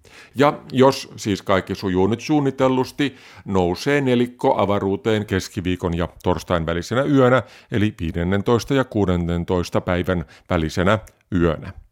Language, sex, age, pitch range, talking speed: Finnish, male, 50-69, 95-125 Hz, 110 wpm